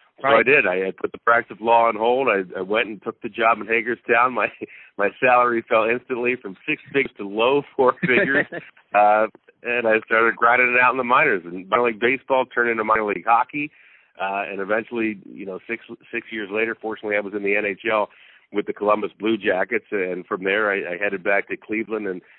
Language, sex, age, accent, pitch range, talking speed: English, male, 40-59, American, 105-120 Hz, 220 wpm